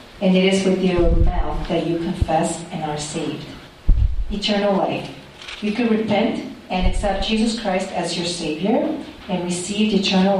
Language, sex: Korean, female